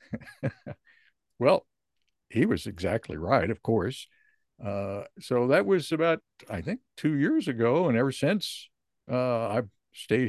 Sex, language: male, English